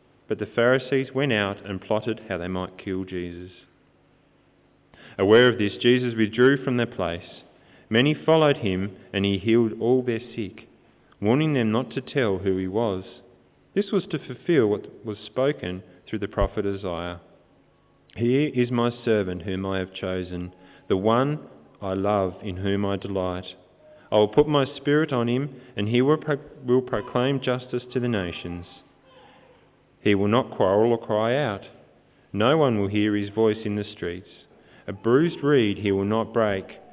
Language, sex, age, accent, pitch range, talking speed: English, male, 30-49, Australian, 95-125 Hz, 170 wpm